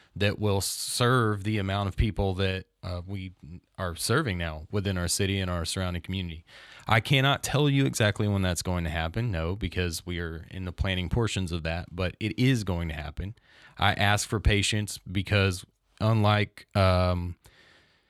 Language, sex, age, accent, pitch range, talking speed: English, male, 30-49, American, 90-105 Hz, 175 wpm